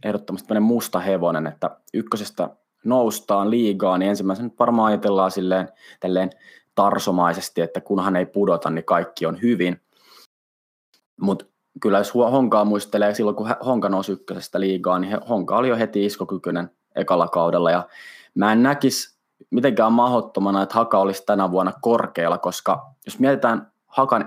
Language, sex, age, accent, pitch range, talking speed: Finnish, male, 20-39, native, 95-115 Hz, 140 wpm